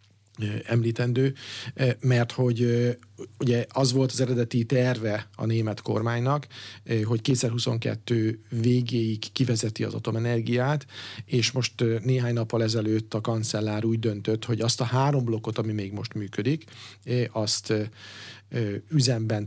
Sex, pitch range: male, 110-125 Hz